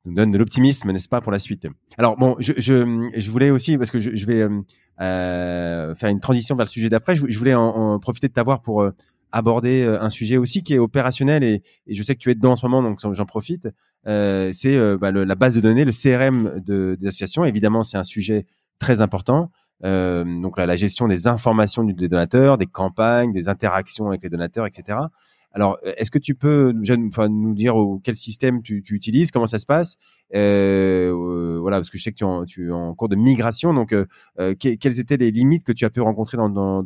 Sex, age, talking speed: male, 30-49, 235 wpm